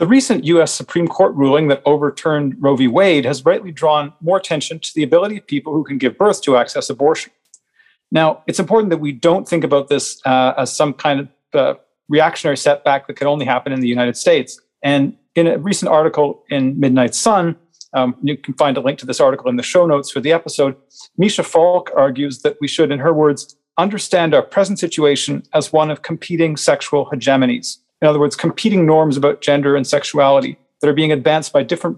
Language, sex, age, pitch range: English, male, 40-59, 140-170 Hz